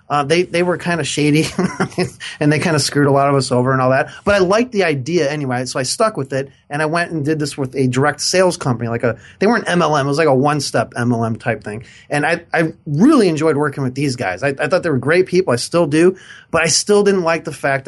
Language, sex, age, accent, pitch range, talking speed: English, male, 30-49, American, 135-180 Hz, 275 wpm